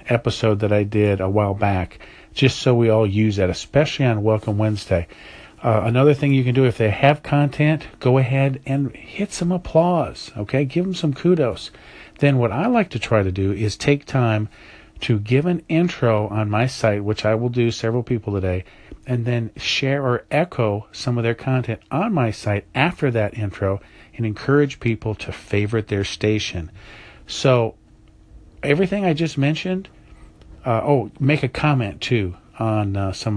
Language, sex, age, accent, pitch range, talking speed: English, male, 50-69, American, 105-135 Hz, 180 wpm